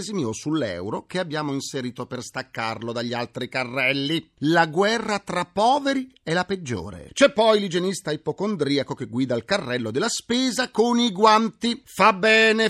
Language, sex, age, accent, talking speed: Italian, male, 40-59, native, 150 wpm